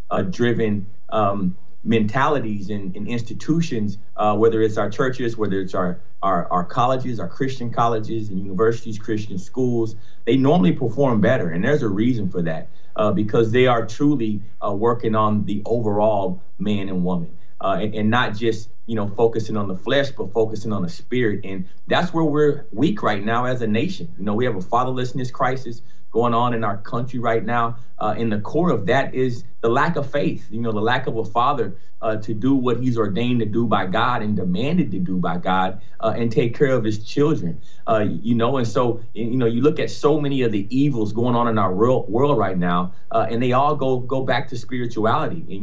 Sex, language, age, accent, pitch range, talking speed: male, English, 30-49, American, 105-130 Hz, 210 wpm